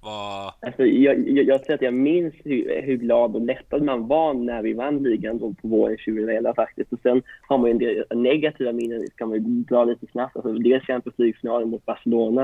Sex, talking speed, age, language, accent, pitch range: male, 235 wpm, 30-49, Swedish, native, 110-125 Hz